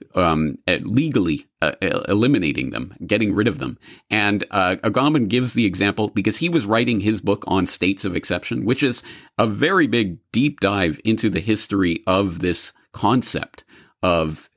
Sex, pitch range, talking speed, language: male, 90-115 Hz, 165 wpm, English